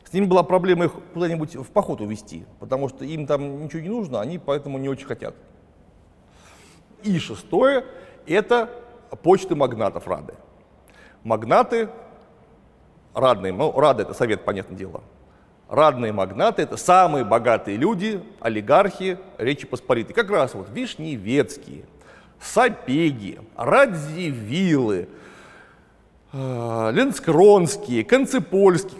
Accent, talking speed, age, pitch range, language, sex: native, 110 wpm, 40-59, 125-195 Hz, Russian, male